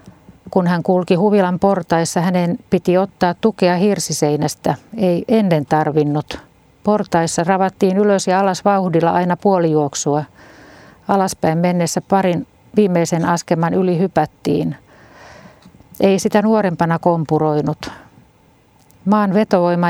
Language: Finnish